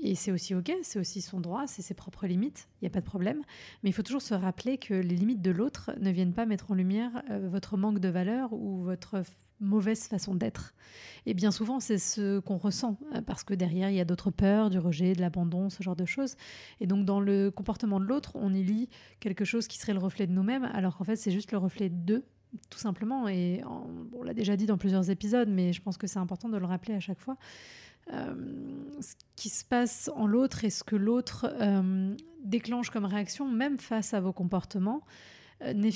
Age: 30-49